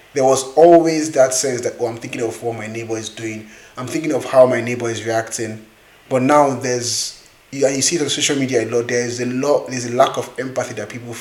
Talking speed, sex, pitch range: 235 wpm, male, 115-130 Hz